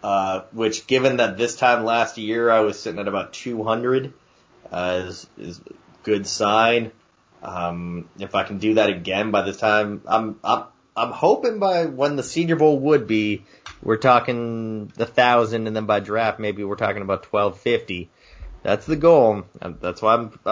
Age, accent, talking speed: 20-39, American, 175 wpm